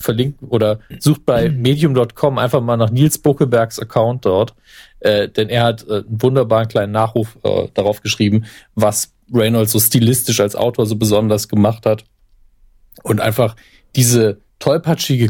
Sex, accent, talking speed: male, German, 150 wpm